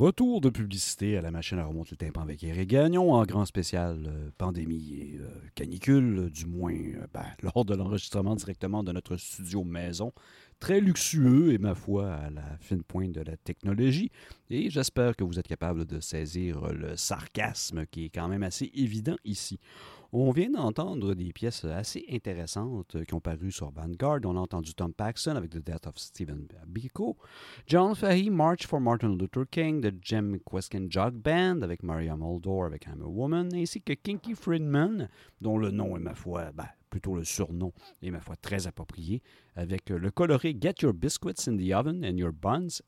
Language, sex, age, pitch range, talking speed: French, male, 50-69, 85-125 Hz, 190 wpm